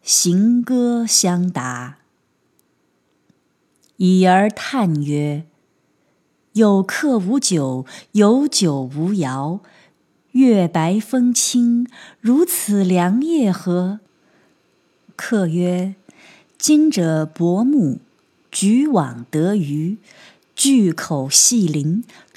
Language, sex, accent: Chinese, female, native